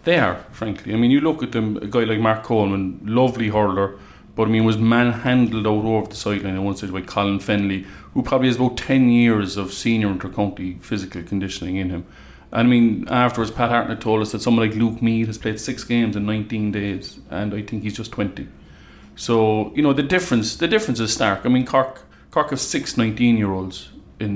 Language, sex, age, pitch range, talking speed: English, male, 30-49, 105-125 Hz, 220 wpm